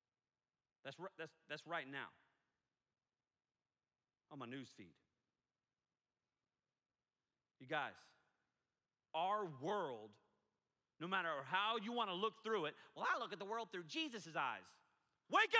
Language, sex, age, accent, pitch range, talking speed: English, male, 40-59, American, 215-310 Hz, 120 wpm